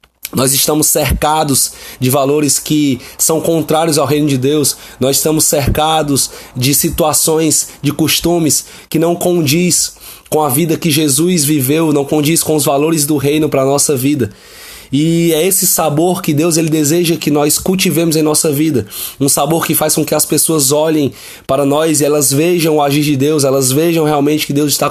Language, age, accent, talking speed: Portuguese, 20-39, Brazilian, 185 wpm